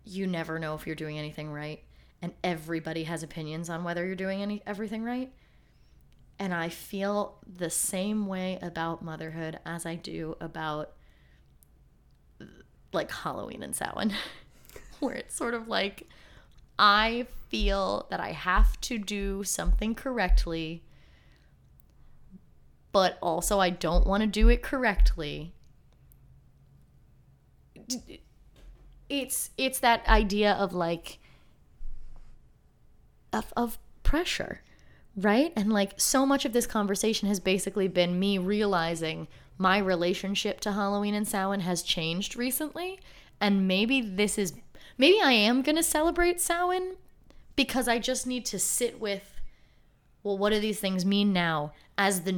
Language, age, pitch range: English, 20-39, 170-215 Hz